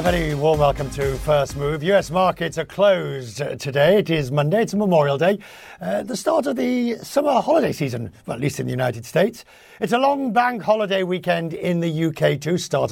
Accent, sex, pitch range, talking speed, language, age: British, male, 135-185 Hz, 205 wpm, English, 50-69